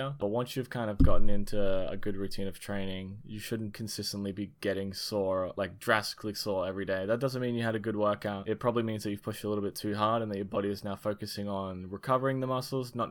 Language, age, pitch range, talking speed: English, 20-39, 100-115 Hz, 245 wpm